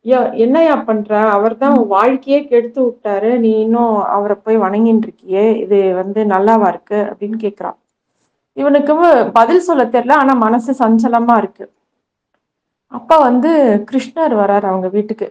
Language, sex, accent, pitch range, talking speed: Tamil, female, native, 215-255 Hz, 125 wpm